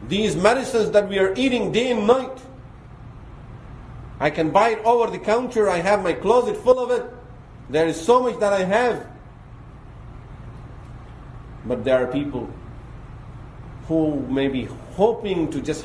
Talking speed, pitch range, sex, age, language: 150 wpm, 120-180 Hz, male, 50-69, English